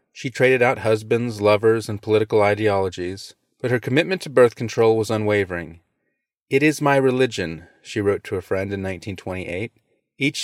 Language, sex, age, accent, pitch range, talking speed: English, male, 30-49, American, 105-135 Hz, 160 wpm